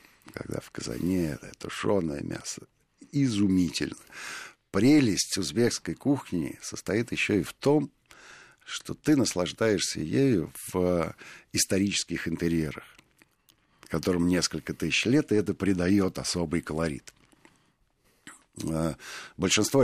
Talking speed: 95 wpm